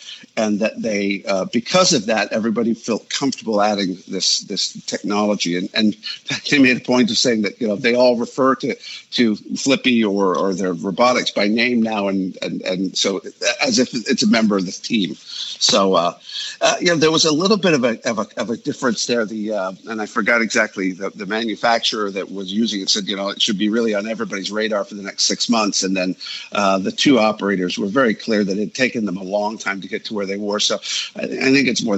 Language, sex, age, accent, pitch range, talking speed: English, male, 50-69, American, 95-120 Hz, 235 wpm